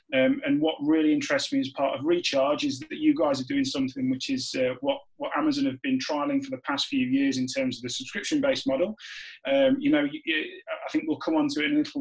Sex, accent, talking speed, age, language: male, British, 260 wpm, 30-49, English